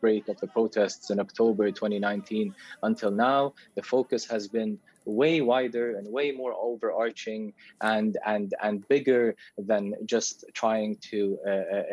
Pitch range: 110-140 Hz